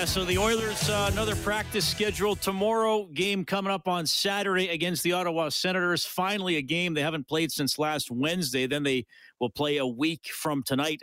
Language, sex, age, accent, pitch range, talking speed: English, male, 40-59, American, 130-165 Hz, 185 wpm